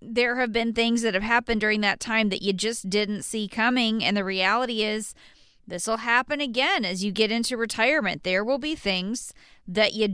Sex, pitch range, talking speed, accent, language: female, 200-250 Hz, 205 wpm, American, English